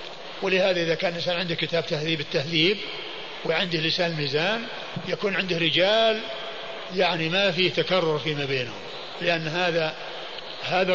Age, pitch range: 50-69, 175-250 Hz